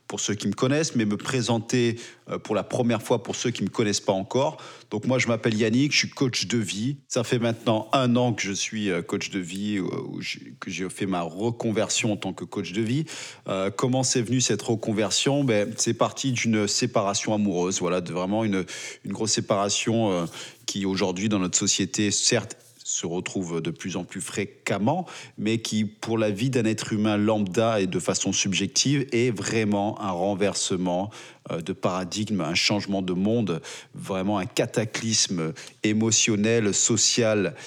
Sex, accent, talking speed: male, French, 175 wpm